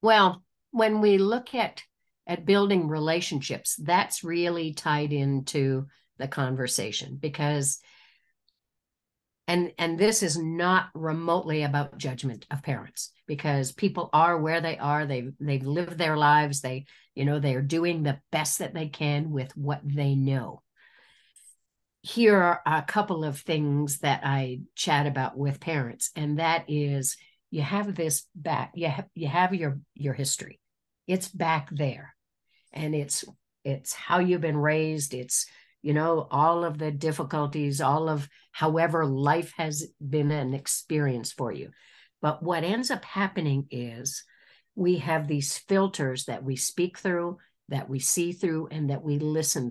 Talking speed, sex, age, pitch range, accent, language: 150 wpm, female, 50-69, 140-170 Hz, American, English